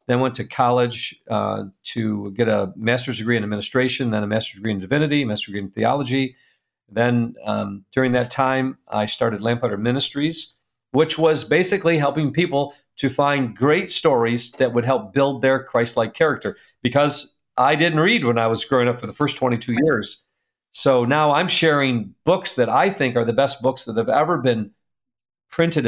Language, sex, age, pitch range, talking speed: English, male, 50-69, 115-140 Hz, 180 wpm